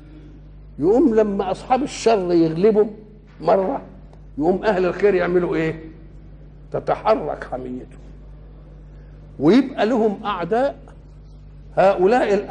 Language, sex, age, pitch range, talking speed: Arabic, male, 60-79, 165-215 Hz, 80 wpm